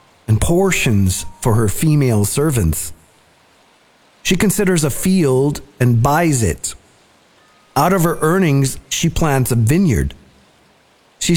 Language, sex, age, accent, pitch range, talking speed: English, male, 40-59, American, 105-155 Hz, 115 wpm